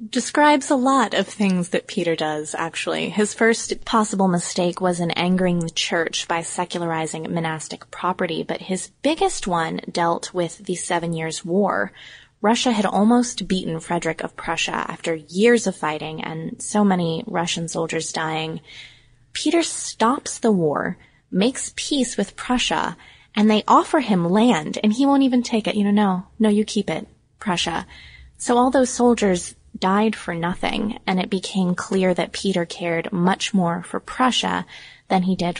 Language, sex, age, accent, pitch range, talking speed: English, female, 20-39, American, 170-220 Hz, 165 wpm